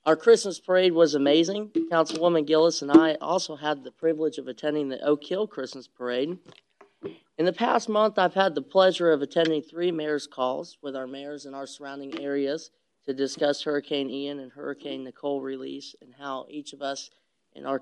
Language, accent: English, American